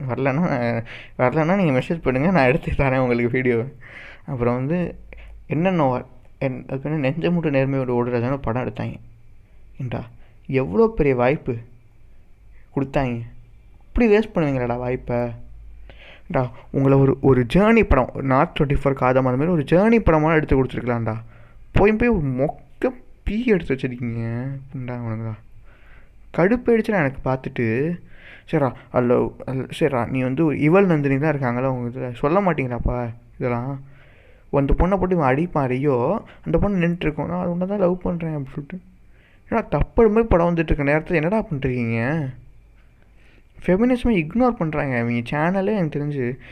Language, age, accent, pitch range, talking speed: Tamil, 20-39, native, 120-165 Hz, 130 wpm